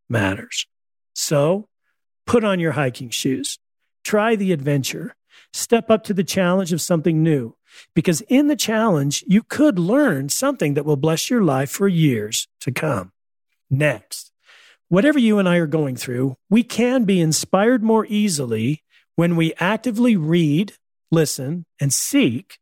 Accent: American